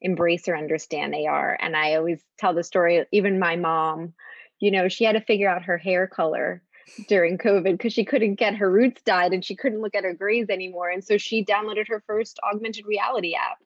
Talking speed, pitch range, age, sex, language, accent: 215 wpm, 165-205 Hz, 20-39, female, English, American